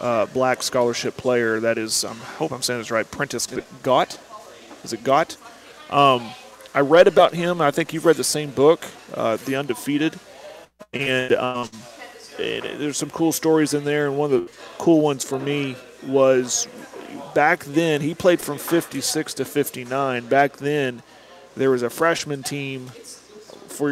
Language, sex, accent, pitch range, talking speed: English, male, American, 125-145 Hz, 170 wpm